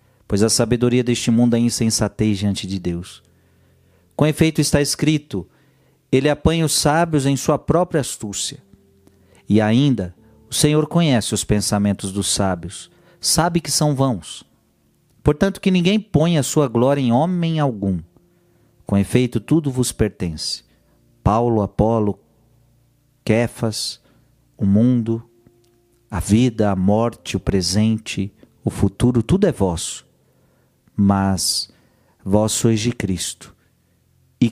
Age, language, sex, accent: 50-69, Portuguese, male, Brazilian